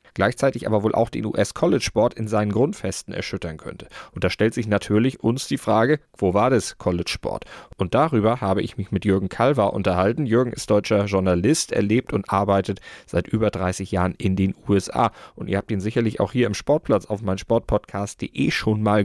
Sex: male